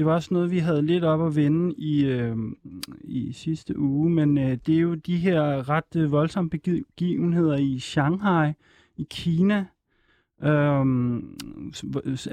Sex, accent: male, native